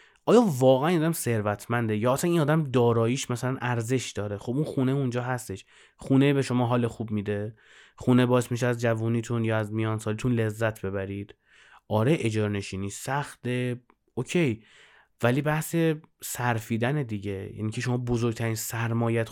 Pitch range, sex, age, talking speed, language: 110-135 Hz, male, 20-39, 150 wpm, Persian